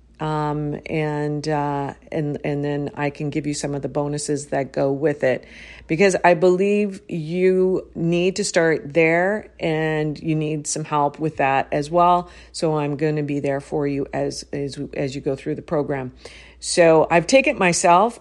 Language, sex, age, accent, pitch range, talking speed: English, female, 50-69, American, 145-185 Hz, 185 wpm